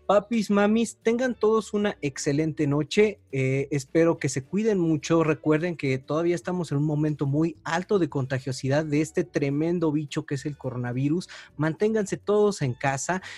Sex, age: male, 30-49